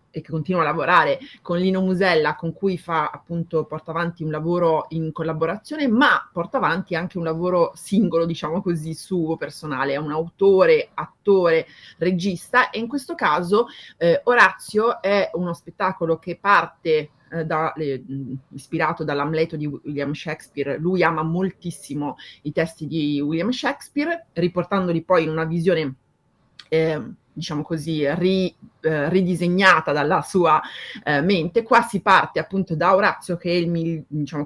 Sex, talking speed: female, 145 wpm